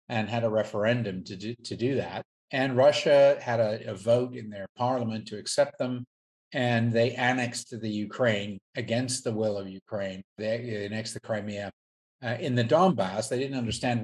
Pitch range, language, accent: 105-125 Hz, English, American